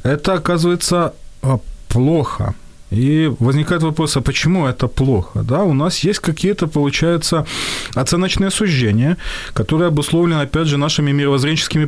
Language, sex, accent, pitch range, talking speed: Ukrainian, male, native, 125-170 Hz, 120 wpm